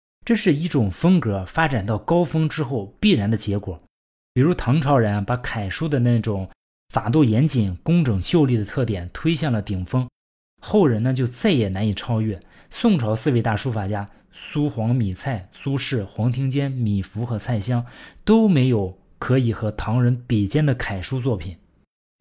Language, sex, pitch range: Chinese, male, 105-145 Hz